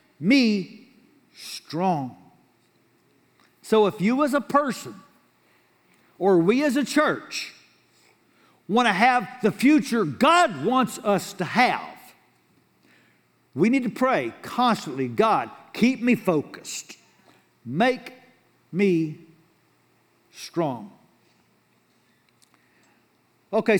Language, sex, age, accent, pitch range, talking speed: English, male, 60-79, American, 160-245 Hz, 90 wpm